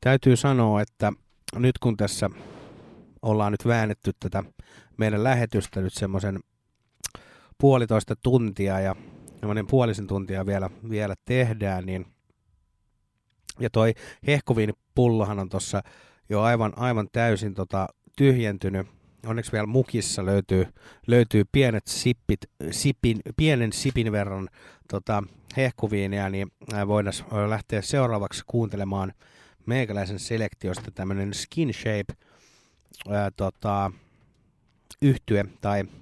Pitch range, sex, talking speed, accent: 100-120 Hz, male, 100 wpm, native